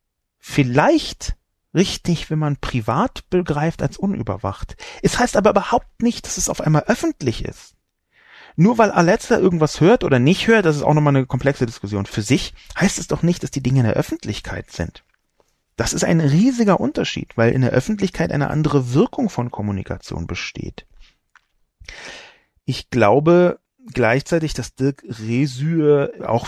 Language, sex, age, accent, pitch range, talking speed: German, male, 40-59, German, 120-160 Hz, 155 wpm